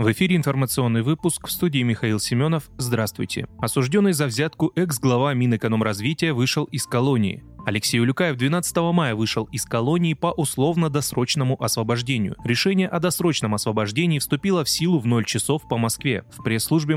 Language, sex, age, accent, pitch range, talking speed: Russian, male, 20-39, native, 115-165 Hz, 145 wpm